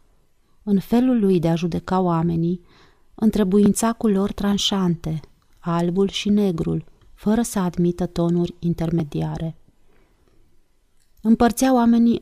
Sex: female